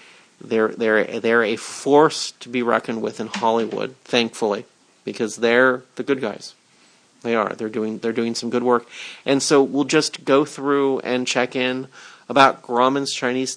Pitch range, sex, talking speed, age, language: 115-145 Hz, male, 170 wpm, 40-59, English